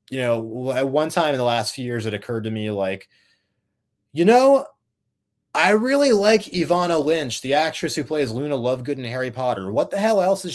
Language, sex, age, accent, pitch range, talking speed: English, male, 20-39, American, 100-130 Hz, 205 wpm